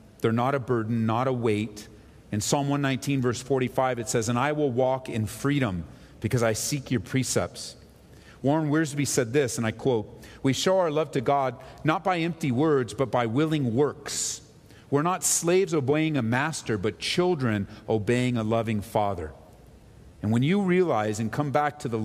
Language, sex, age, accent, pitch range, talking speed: English, male, 40-59, American, 110-150 Hz, 180 wpm